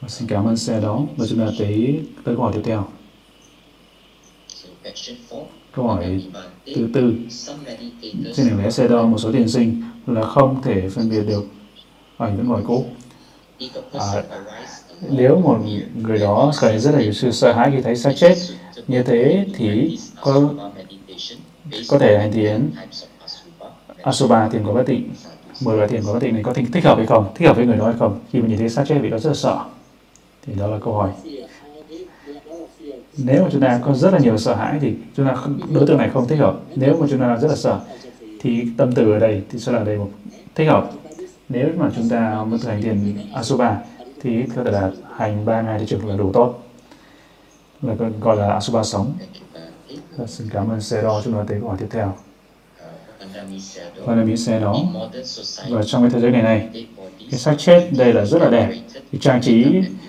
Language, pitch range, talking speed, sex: Vietnamese, 110-135 Hz, 195 wpm, male